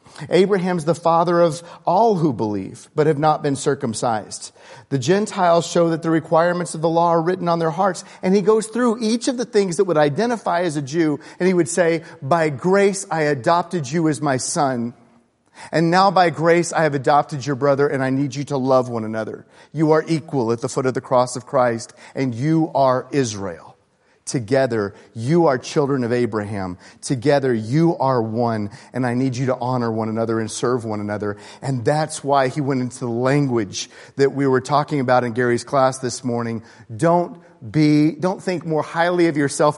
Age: 40-59